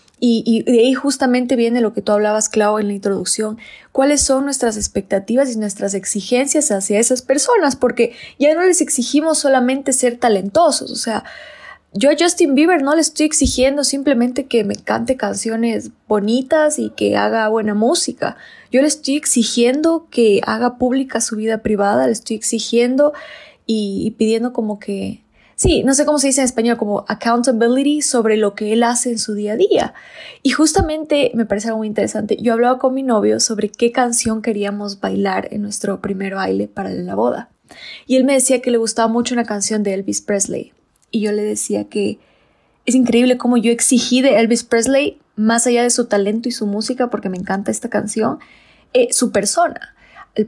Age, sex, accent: 20-39, female, Mexican